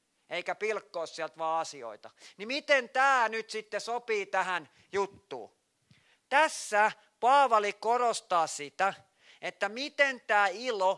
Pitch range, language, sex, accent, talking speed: 165-215 Hz, Finnish, male, native, 115 wpm